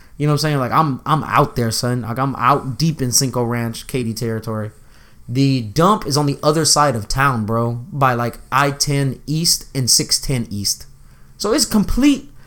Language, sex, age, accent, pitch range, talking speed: English, male, 20-39, American, 120-160 Hz, 190 wpm